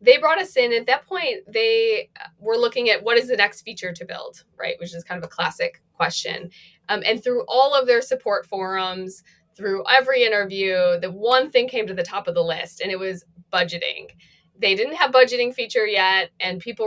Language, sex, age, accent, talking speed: English, female, 20-39, American, 210 wpm